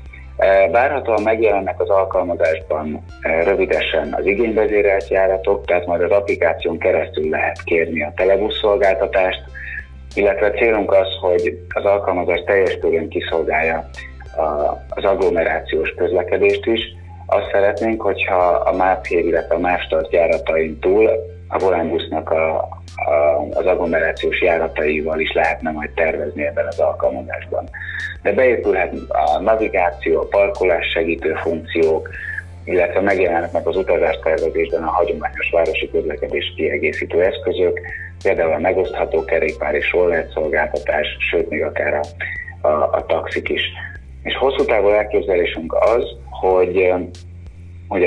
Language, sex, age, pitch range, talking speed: Hungarian, male, 30-49, 85-120 Hz, 115 wpm